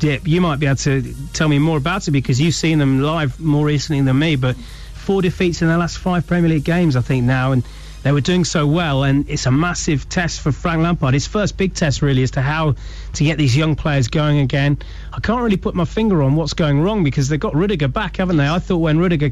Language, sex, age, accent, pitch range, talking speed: English, male, 30-49, British, 140-170 Hz, 260 wpm